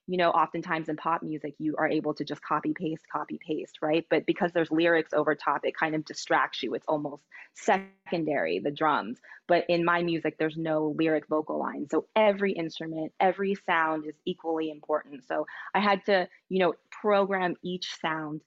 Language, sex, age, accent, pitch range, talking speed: English, female, 20-39, American, 155-195 Hz, 190 wpm